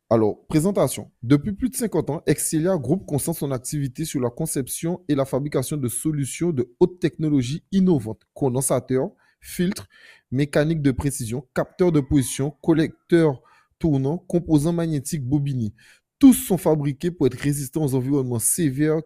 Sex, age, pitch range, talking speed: male, 30-49, 120-165 Hz, 145 wpm